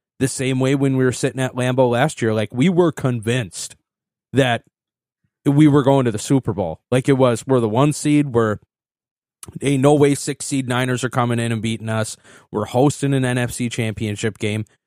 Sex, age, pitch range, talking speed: male, 30-49, 115-140 Hz, 190 wpm